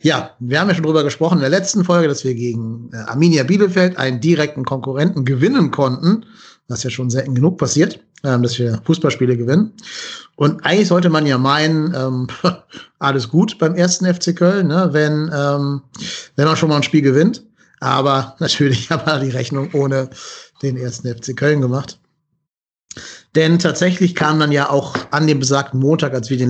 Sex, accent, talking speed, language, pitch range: male, German, 170 wpm, German, 125-165 Hz